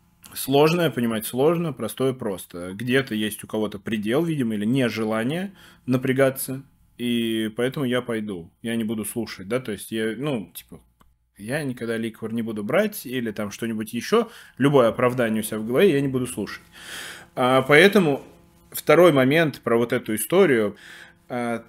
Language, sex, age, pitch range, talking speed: Russian, male, 20-39, 115-145 Hz, 160 wpm